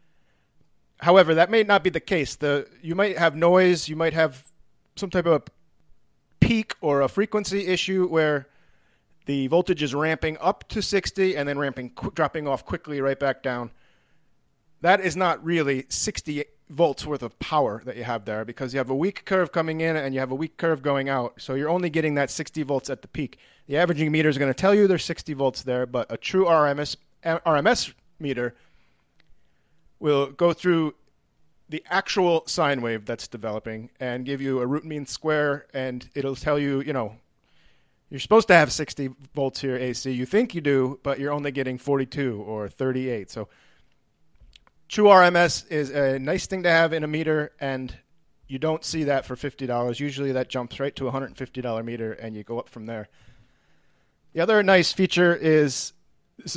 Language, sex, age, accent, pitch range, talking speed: English, male, 30-49, American, 130-170 Hz, 190 wpm